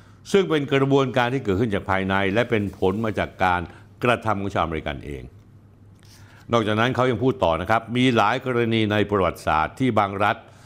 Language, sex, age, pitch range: Thai, male, 60-79, 90-115 Hz